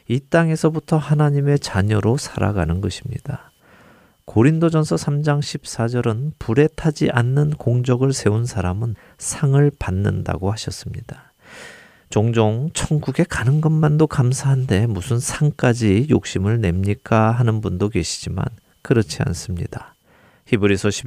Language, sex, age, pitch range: Korean, male, 40-59, 100-145 Hz